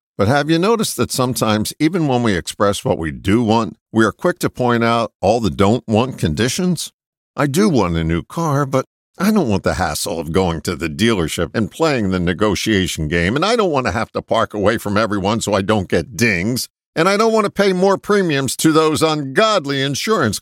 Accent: American